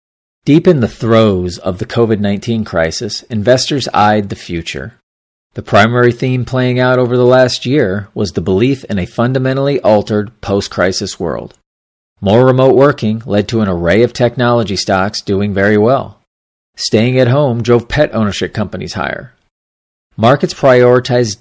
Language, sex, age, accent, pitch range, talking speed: English, male, 40-59, American, 100-135 Hz, 150 wpm